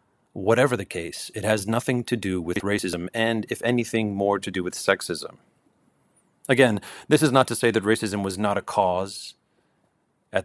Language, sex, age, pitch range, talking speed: English, male, 30-49, 100-120 Hz, 180 wpm